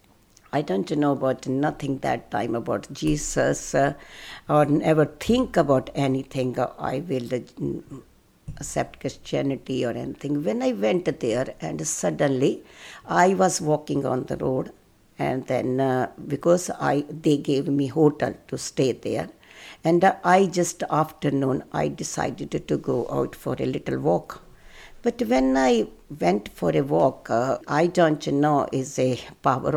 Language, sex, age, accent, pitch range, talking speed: English, female, 60-79, Indian, 130-180 Hz, 145 wpm